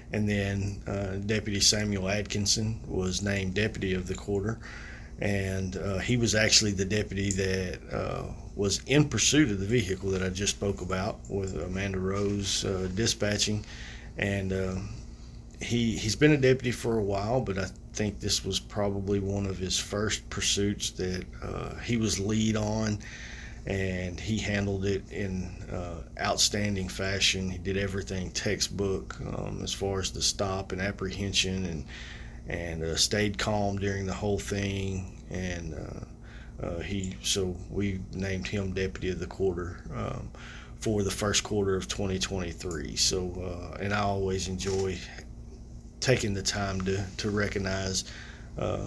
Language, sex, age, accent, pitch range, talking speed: English, male, 40-59, American, 95-105 Hz, 150 wpm